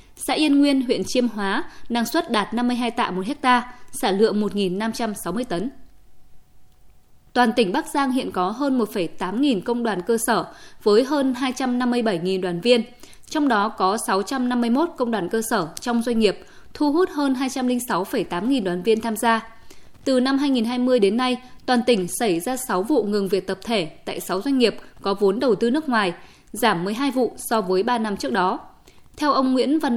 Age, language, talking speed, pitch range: 20-39, Vietnamese, 190 wpm, 205-265 Hz